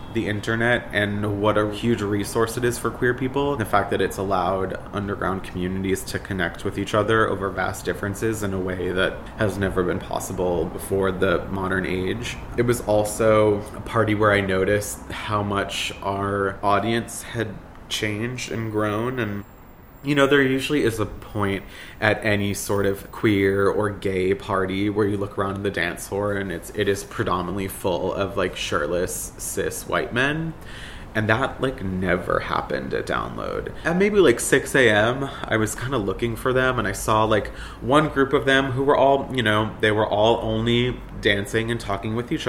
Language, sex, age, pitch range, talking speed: English, male, 20-39, 100-115 Hz, 185 wpm